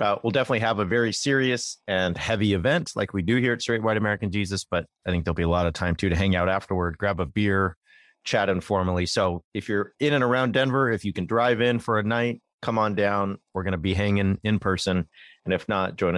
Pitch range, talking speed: 95-115 Hz, 250 wpm